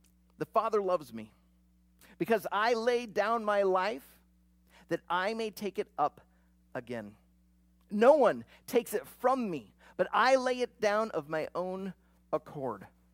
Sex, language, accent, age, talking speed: male, English, American, 40-59, 145 wpm